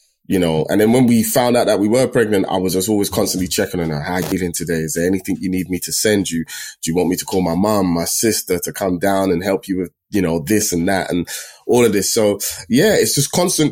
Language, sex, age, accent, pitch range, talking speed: English, male, 20-39, British, 85-105 Hz, 285 wpm